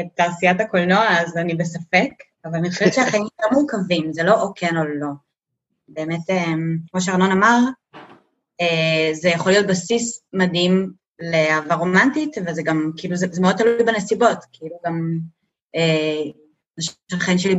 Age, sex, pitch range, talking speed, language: 20-39, female, 160-195 Hz, 145 wpm, Hebrew